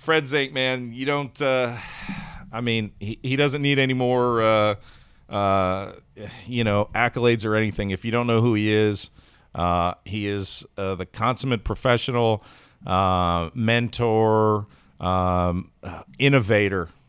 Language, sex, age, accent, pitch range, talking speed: English, male, 40-59, American, 95-115 Hz, 140 wpm